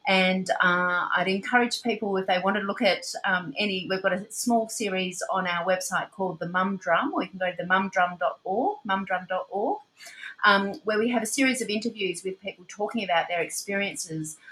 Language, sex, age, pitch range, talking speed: English, female, 30-49, 180-210 Hz, 195 wpm